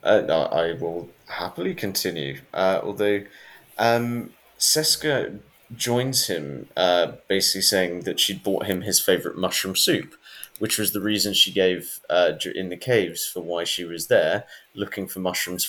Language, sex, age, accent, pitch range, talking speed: English, male, 30-49, British, 95-110 Hz, 155 wpm